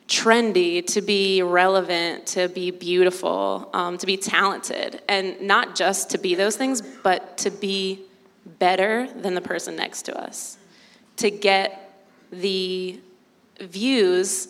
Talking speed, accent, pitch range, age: 135 wpm, American, 180-215 Hz, 20-39